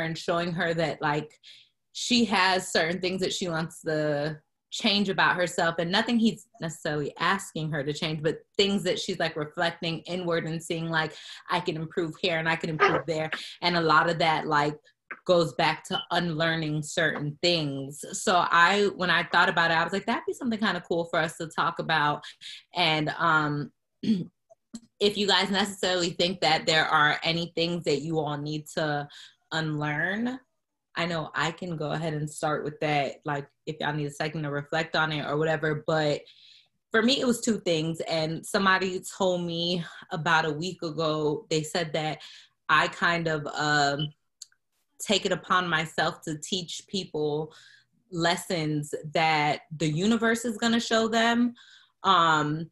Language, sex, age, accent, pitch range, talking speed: English, female, 20-39, American, 155-185 Hz, 175 wpm